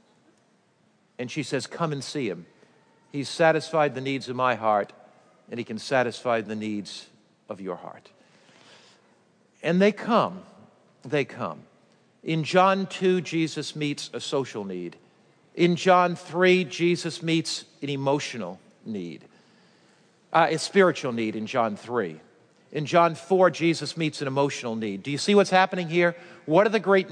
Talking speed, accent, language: 155 wpm, American, English